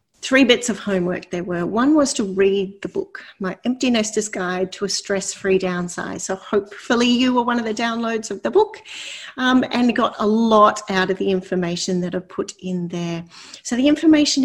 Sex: female